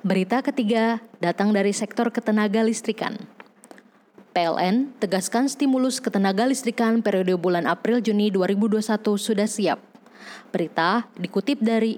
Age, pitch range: 20-39, 210-245 Hz